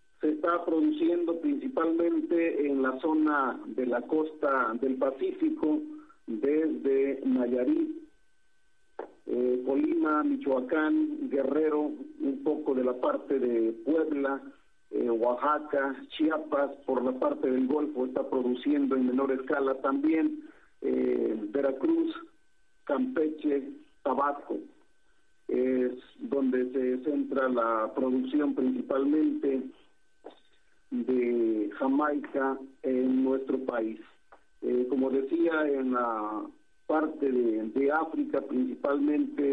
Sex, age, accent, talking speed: male, 50-69, Mexican, 100 wpm